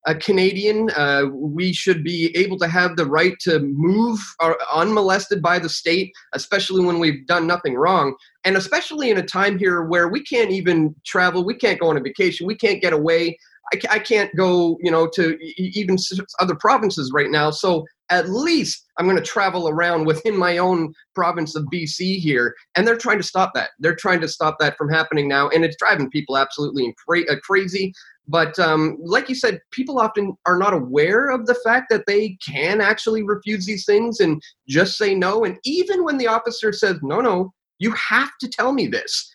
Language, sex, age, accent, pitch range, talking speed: English, male, 30-49, American, 160-205 Hz, 200 wpm